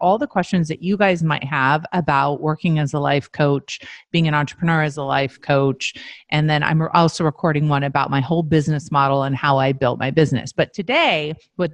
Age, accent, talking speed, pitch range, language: 30-49, American, 210 wpm, 150-185 Hz, English